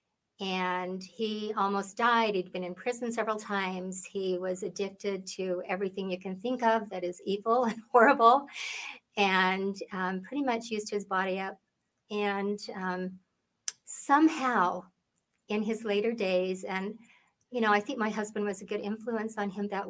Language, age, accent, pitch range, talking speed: English, 50-69, American, 185-225 Hz, 160 wpm